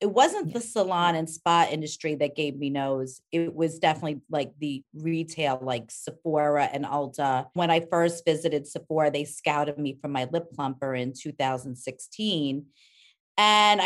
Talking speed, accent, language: 155 wpm, American, English